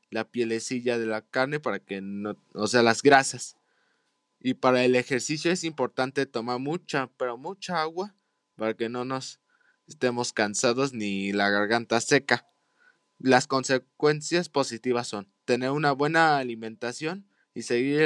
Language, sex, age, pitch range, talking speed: Spanish, male, 20-39, 115-150 Hz, 145 wpm